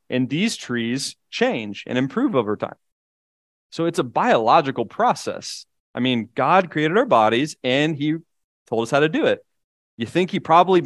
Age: 30-49